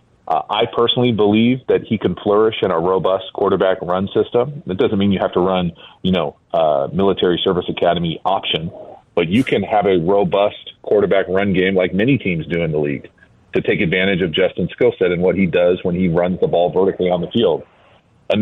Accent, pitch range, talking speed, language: American, 95-115 Hz, 210 wpm, English